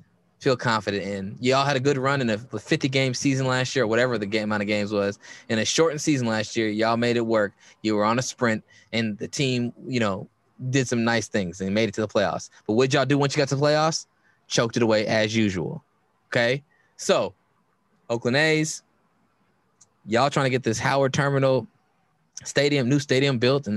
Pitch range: 110-135 Hz